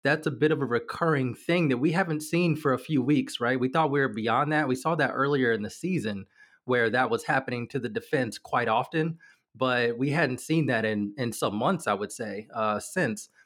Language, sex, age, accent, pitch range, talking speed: English, male, 30-49, American, 120-150 Hz, 230 wpm